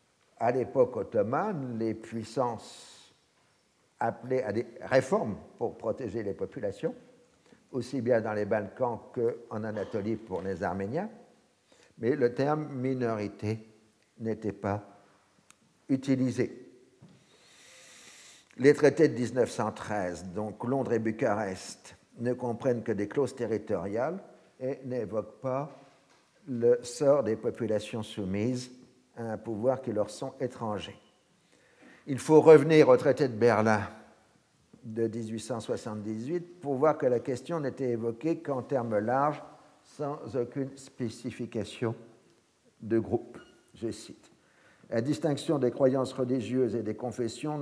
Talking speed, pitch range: 115 wpm, 110-135 Hz